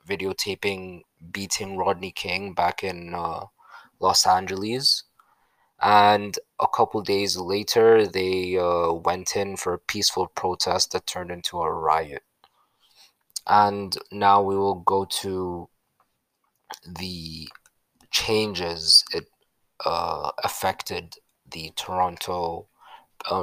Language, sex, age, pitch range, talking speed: English, male, 20-39, 95-110 Hz, 105 wpm